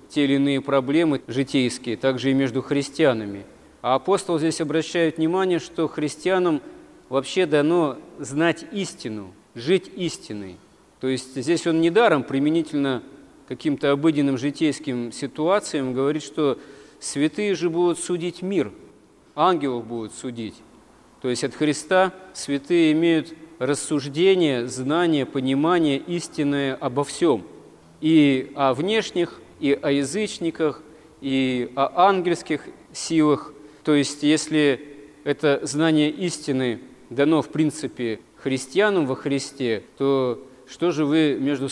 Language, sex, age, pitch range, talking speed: Russian, male, 40-59, 130-160 Hz, 115 wpm